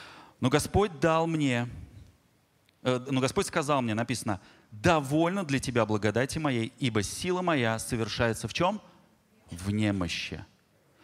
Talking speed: 105 wpm